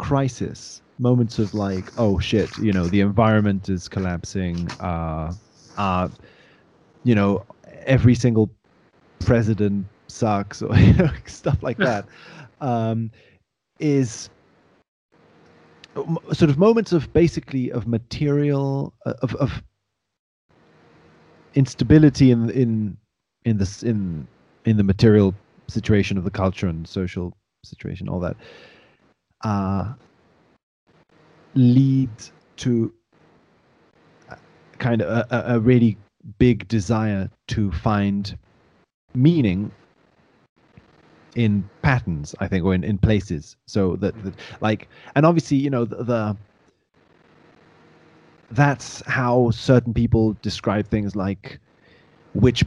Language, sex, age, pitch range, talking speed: English, male, 30-49, 100-125 Hz, 110 wpm